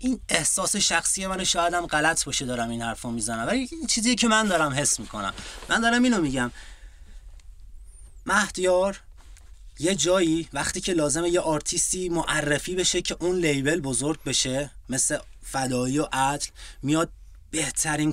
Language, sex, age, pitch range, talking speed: Persian, male, 30-49, 130-175 Hz, 150 wpm